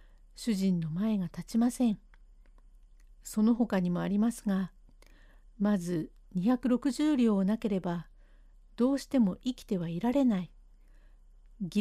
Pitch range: 185-245 Hz